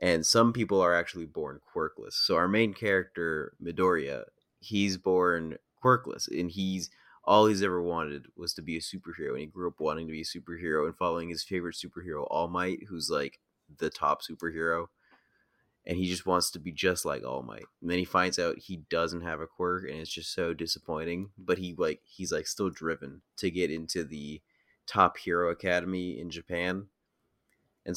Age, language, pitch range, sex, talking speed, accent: 20-39, English, 80-90 Hz, male, 190 wpm, American